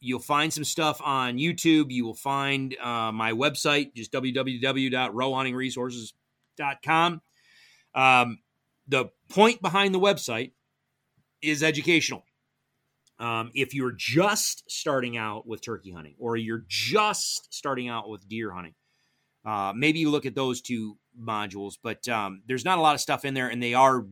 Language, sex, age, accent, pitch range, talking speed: English, male, 30-49, American, 110-145 Hz, 145 wpm